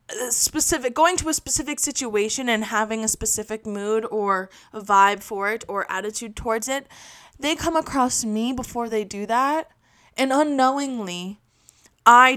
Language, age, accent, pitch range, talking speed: English, 20-39, American, 210-265 Hz, 145 wpm